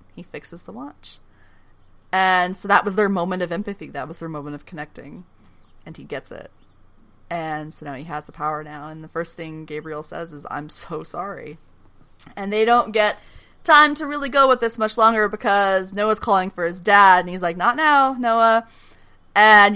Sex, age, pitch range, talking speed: female, 30-49, 165-220 Hz, 195 wpm